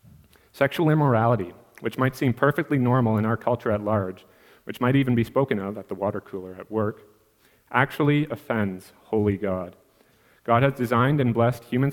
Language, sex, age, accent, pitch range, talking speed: English, male, 30-49, American, 105-125 Hz, 170 wpm